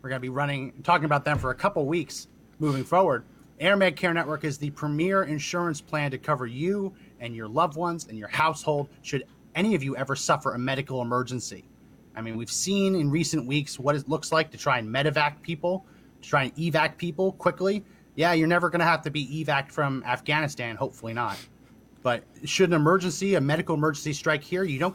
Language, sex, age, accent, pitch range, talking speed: English, male, 30-49, American, 130-170 Hz, 210 wpm